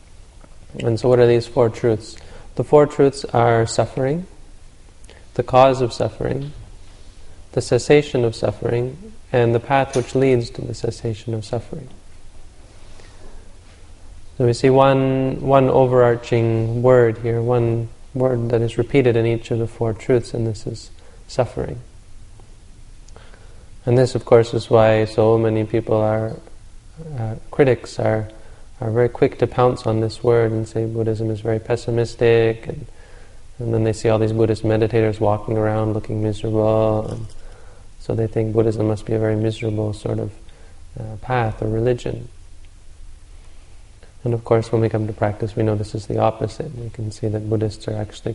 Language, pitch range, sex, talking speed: English, 105-120 Hz, male, 160 wpm